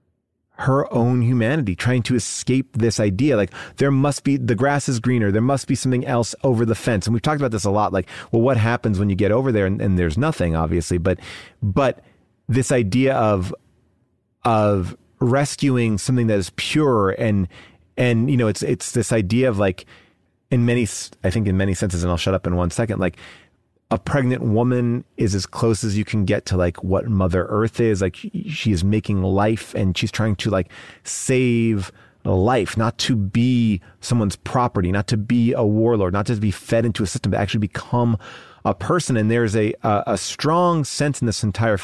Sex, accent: male, American